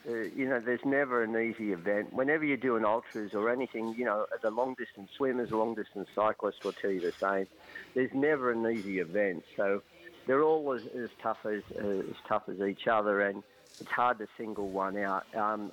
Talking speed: 195 wpm